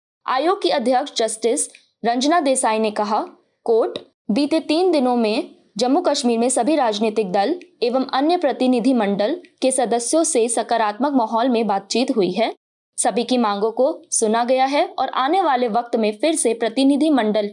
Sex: female